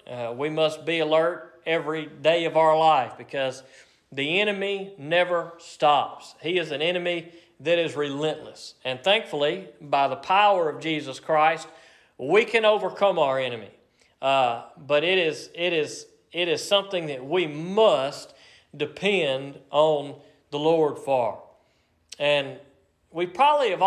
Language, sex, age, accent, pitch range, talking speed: English, male, 40-59, American, 155-200 Hz, 135 wpm